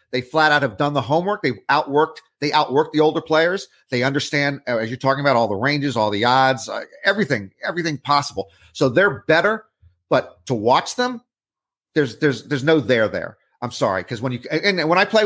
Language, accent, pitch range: English, American, 135-185 Hz